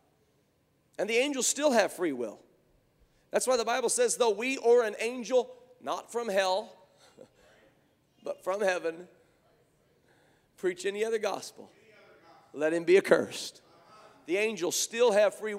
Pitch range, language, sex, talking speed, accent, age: 205-335 Hz, English, male, 140 wpm, American, 40-59